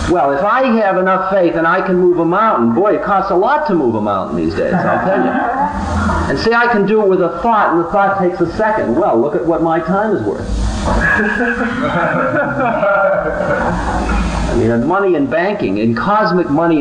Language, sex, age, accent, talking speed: English, male, 50-69, American, 205 wpm